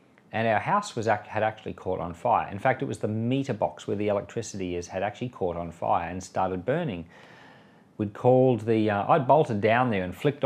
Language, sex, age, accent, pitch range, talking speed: English, male, 40-59, Australian, 105-135 Hz, 210 wpm